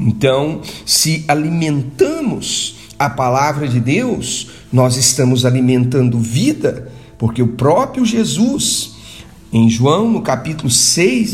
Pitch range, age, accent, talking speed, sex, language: 125-185 Hz, 50-69, Brazilian, 105 wpm, male, Portuguese